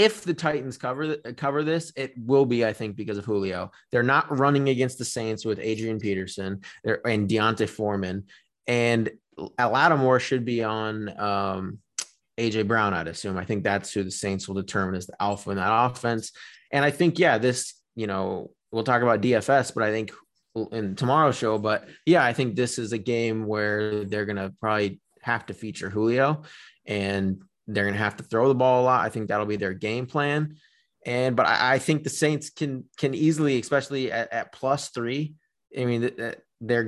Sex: male